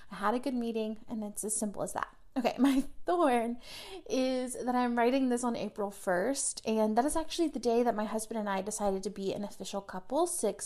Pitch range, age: 205-270 Hz, 30-49